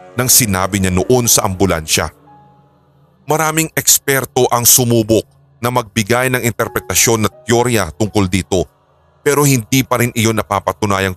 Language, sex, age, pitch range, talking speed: Filipino, male, 30-49, 95-130 Hz, 130 wpm